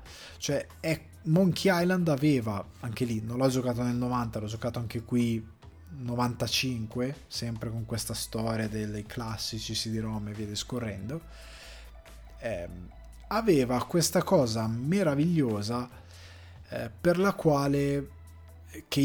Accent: native